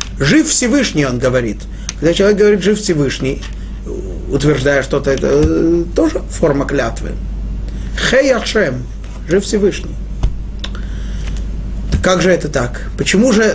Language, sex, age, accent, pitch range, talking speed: Russian, male, 30-49, native, 135-195 Hz, 125 wpm